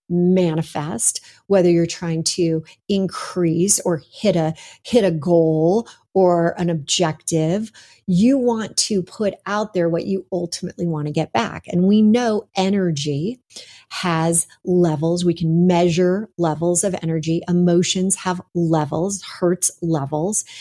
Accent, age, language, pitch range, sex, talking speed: American, 40-59, English, 170-200 Hz, female, 130 wpm